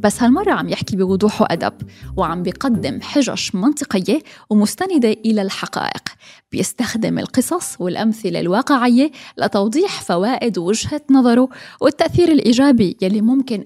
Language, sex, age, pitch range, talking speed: English, female, 10-29, 190-260 Hz, 110 wpm